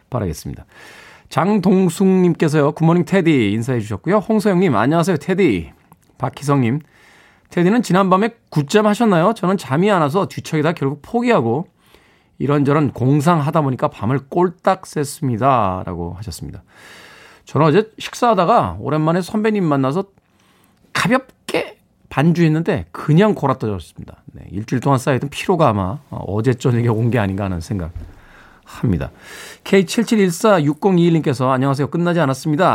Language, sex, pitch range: Korean, male, 115-180 Hz